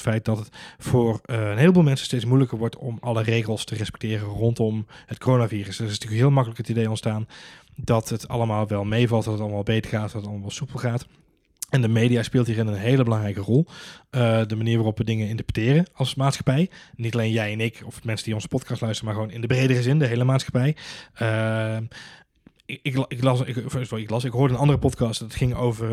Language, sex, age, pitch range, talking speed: Dutch, male, 20-39, 110-130 Hz, 215 wpm